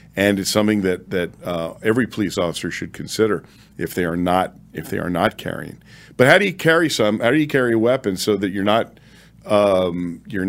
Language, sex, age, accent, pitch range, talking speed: English, male, 50-69, American, 95-120 Hz, 215 wpm